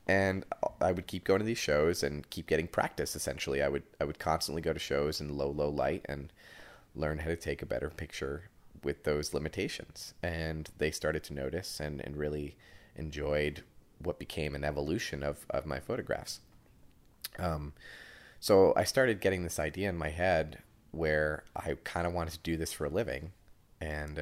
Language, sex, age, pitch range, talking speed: English, male, 30-49, 75-85 Hz, 185 wpm